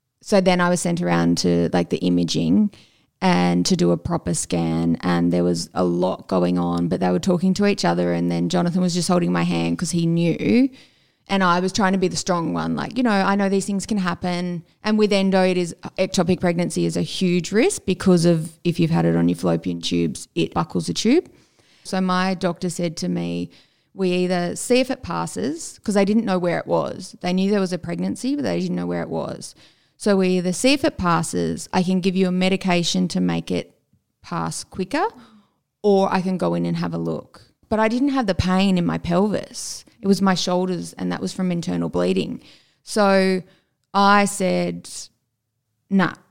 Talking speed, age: 215 wpm, 20-39